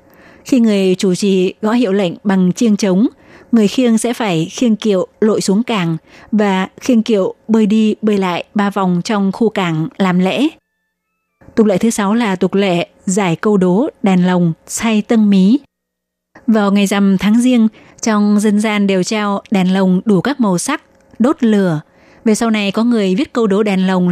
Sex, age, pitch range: female, 20-39, 190-220 Hz